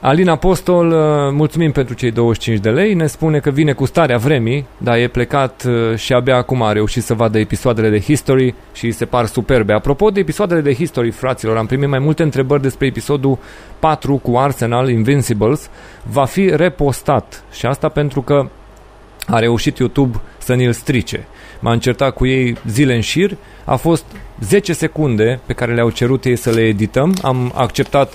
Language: Romanian